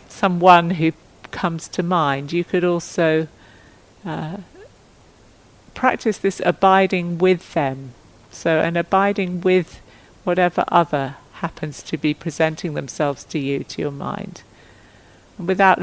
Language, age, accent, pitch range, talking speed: English, 50-69, British, 140-180 Hz, 120 wpm